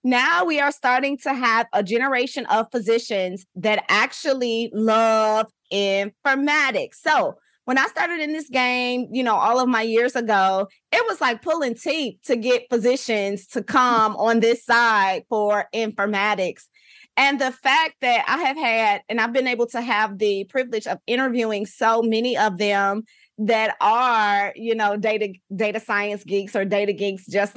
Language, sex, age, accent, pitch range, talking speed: English, female, 20-39, American, 215-260 Hz, 165 wpm